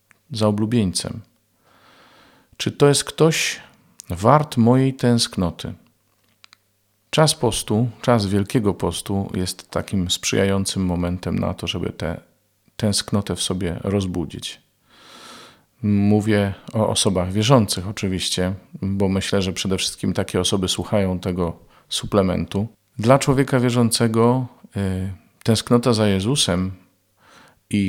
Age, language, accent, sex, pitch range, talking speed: 40-59, Polish, native, male, 95-115 Hz, 105 wpm